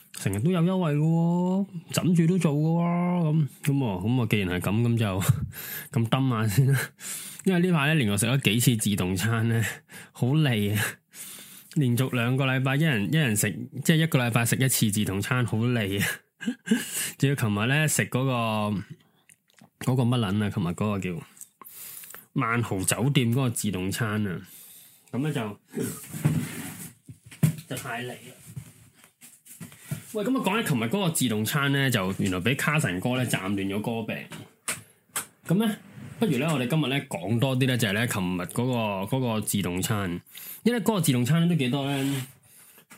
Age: 20-39